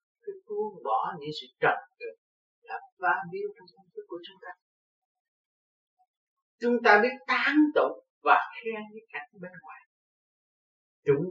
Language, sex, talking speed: Vietnamese, male, 145 wpm